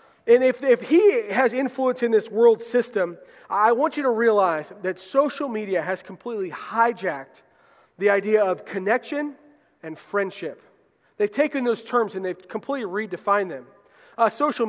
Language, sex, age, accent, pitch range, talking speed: English, male, 40-59, American, 190-245 Hz, 155 wpm